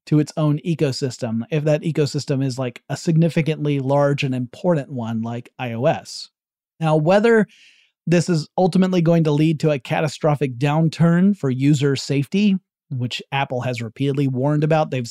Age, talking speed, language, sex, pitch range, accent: 30-49, 155 wpm, English, male, 135-170 Hz, American